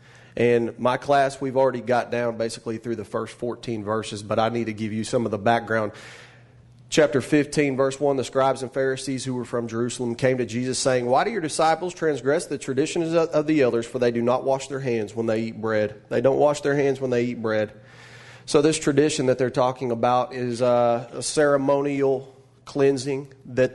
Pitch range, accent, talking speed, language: 115-135 Hz, American, 205 wpm, English